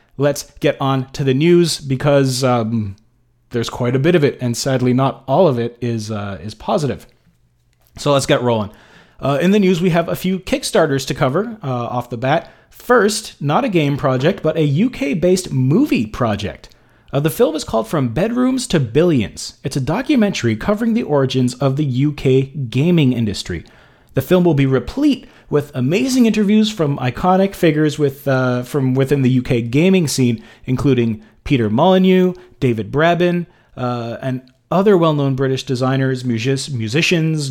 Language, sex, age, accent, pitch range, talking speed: English, male, 30-49, American, 125-170 Hz, 165 wpm